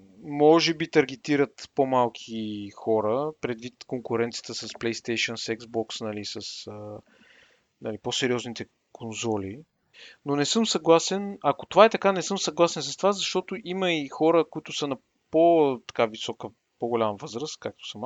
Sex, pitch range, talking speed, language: male, 120-160 Hz, 140 wpm, Bulgarian